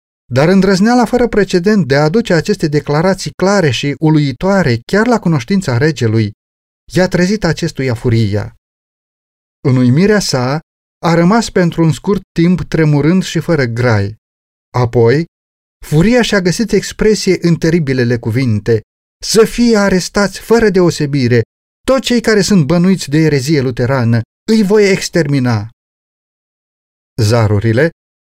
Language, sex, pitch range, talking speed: Romanian, male, 120-185 Hz, 125 wpm